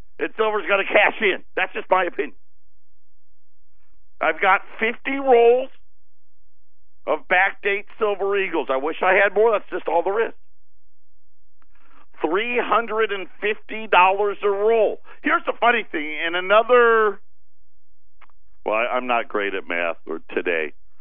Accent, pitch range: American, 165-215 Hz